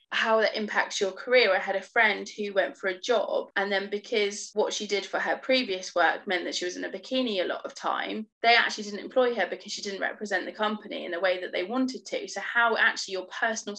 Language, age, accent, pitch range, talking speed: English, 20-39, British, 185-230 Hz, 255 wpm